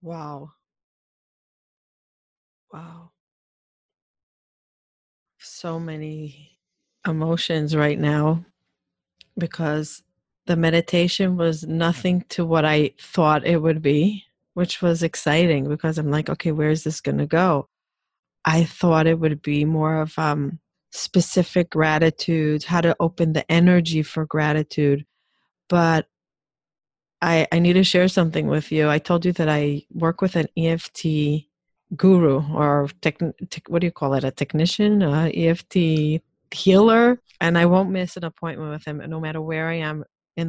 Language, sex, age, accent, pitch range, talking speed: English, female, 30-49, American, 150-175 Hz, 140 wpm